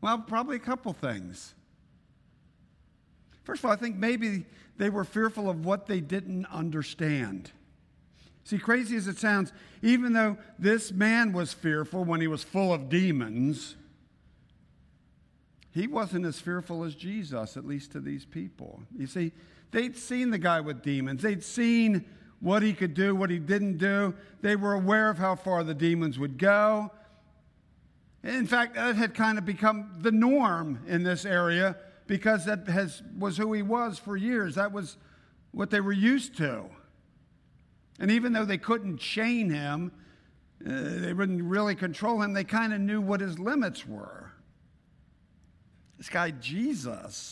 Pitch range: 150-215 Hz